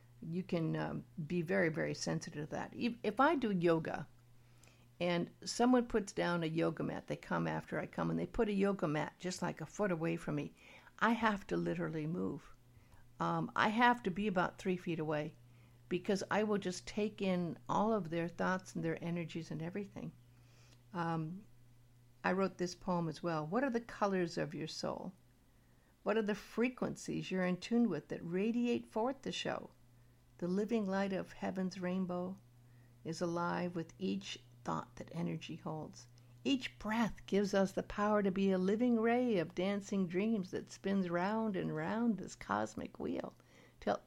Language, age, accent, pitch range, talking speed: English, 60-79, American, 150-205 Hz, 180 wpm